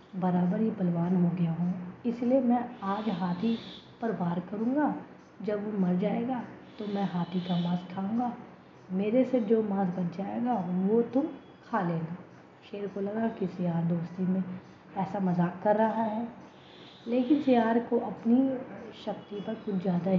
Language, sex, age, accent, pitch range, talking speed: Hindi, female, 20-39, native, 175-225 Hz, 160 wpm